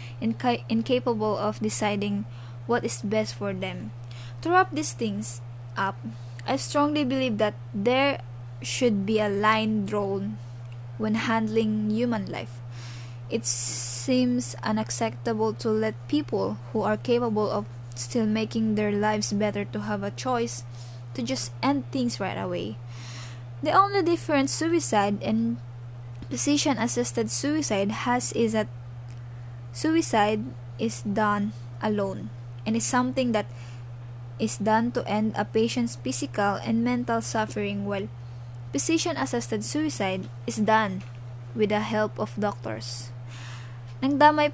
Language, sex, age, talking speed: English, female, 20-39, 125 wpm